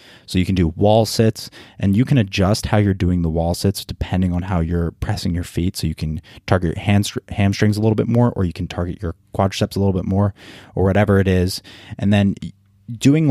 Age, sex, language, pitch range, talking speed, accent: 20-39, male, English, 85-100 Hz, 225 wpm, American